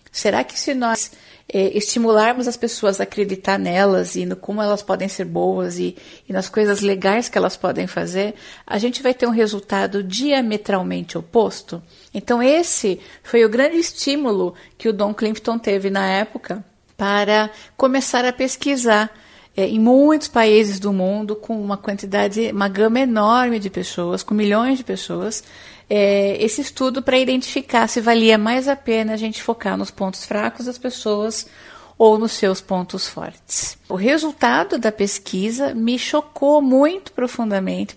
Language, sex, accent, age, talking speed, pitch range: Portuguese, female, Brazilian, 50-69, 160 wpm, 200-250 Hz